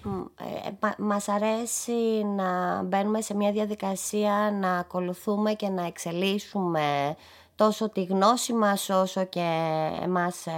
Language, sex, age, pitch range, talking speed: Greek, female, 20-39, 185-220 Hz, 110 wpm